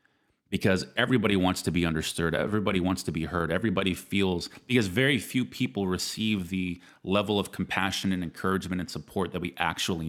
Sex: male